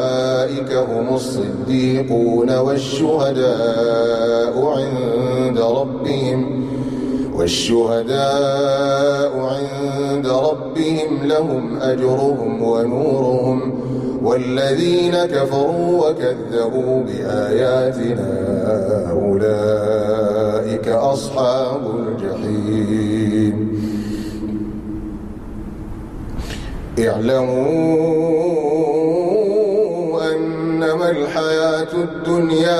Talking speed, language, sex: 40 wpm, Arabic, male